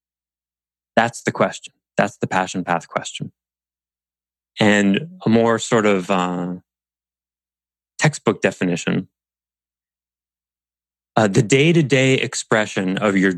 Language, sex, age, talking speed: English, male, 20-39, 100 wpm